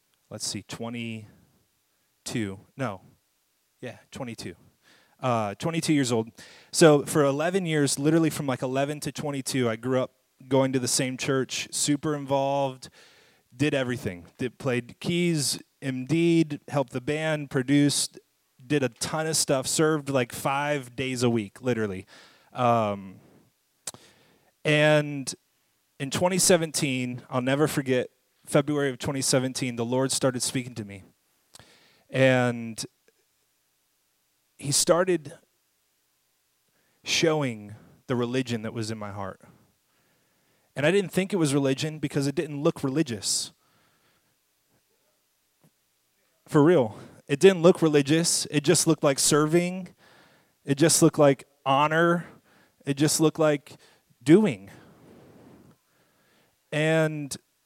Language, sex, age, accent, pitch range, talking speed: English, male, 30-49, American, 125-155 Hz, 120 wpm